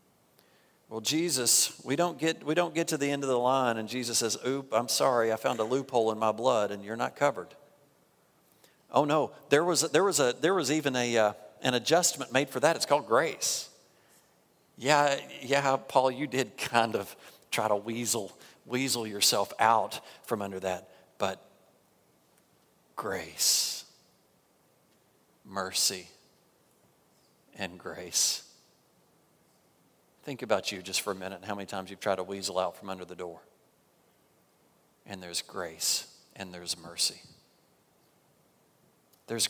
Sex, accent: male, American